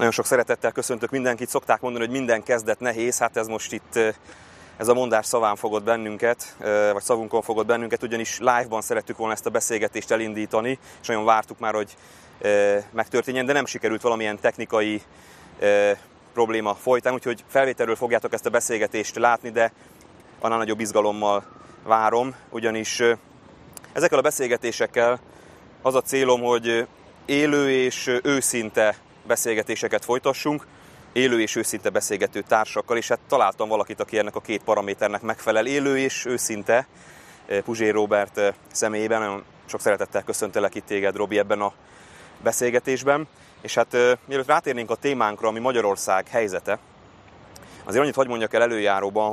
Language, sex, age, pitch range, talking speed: Hungarian, male, 30-49, 105-125 Hz, 140 wpm